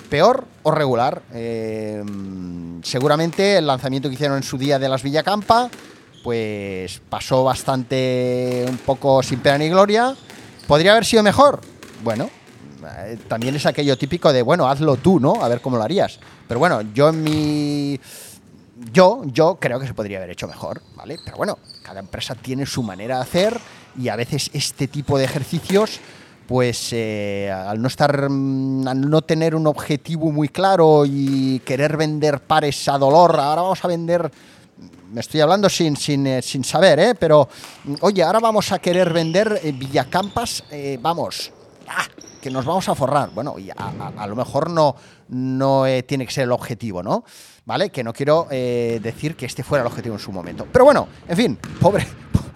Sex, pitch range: male, 120-155 Hz